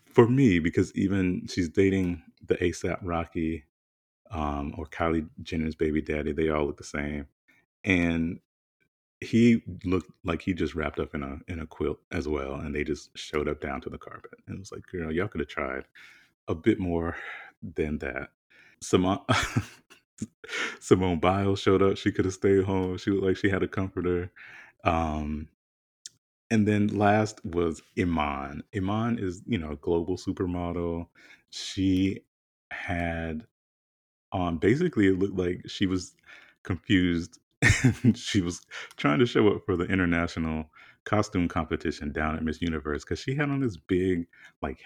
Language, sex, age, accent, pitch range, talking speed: English, male, 30-49, American, 80-95 Hz, 160 wpm